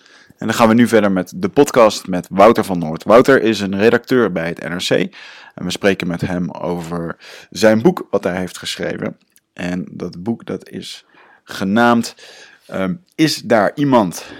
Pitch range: 90-110 Hz